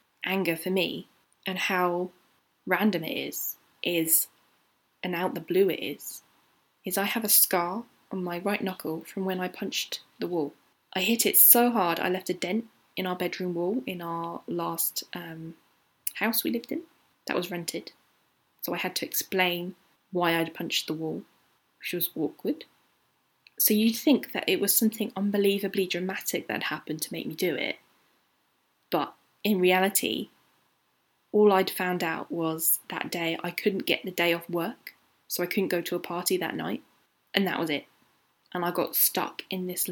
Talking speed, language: 180 wpm, English